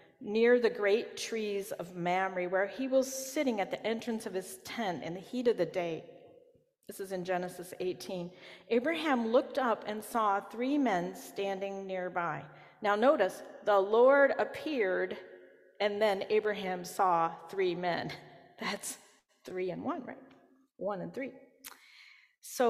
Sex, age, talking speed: female, 40-59, 150 wpm